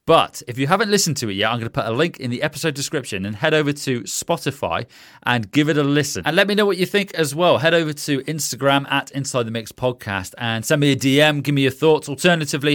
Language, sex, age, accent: English, male, 30-49, British